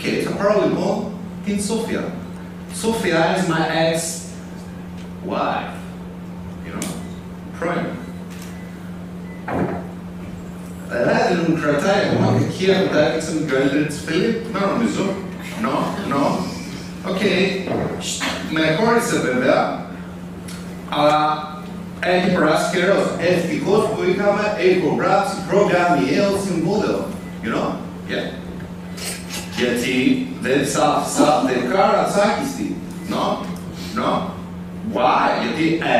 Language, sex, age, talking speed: Greek, male, 30-49, 65 wpm